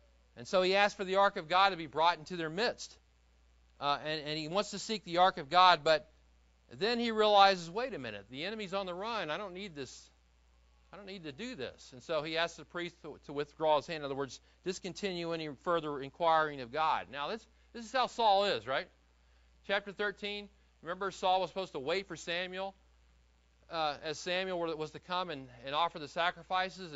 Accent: American